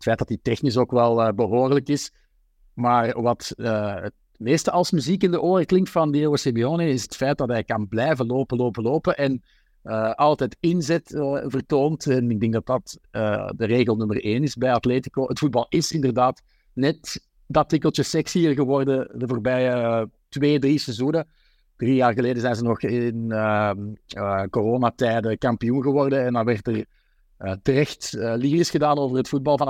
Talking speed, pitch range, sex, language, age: 185 wpm, 115-145 Hz, male, Dutch, 50-69